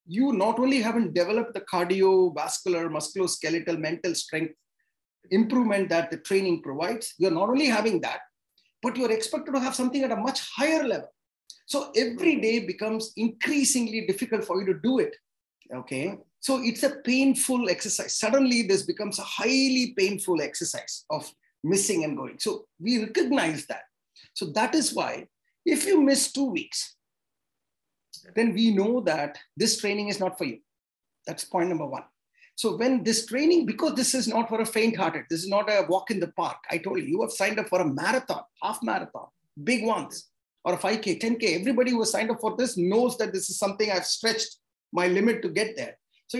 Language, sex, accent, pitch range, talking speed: English, male, Indian, 185-255 Hz, 185 wpm